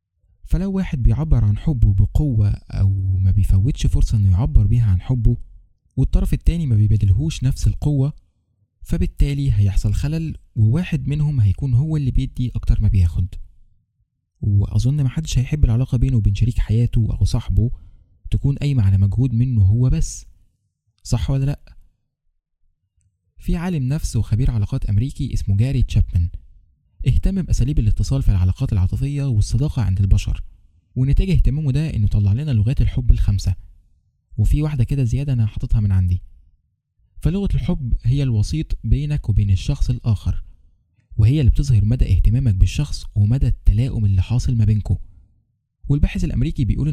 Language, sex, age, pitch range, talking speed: Arabic, male, 20-39, 95-130 Hz, 140 wpm